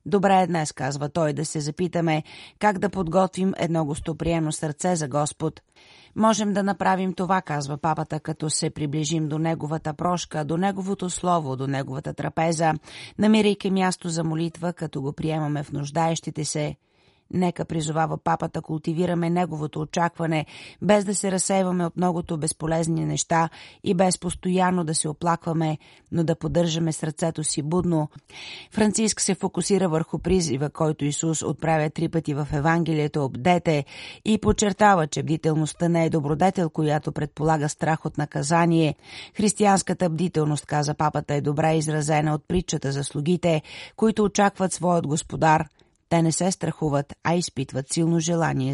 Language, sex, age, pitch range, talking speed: Bulgarian, female, 30-49, 155-180 Hz, 145 wpm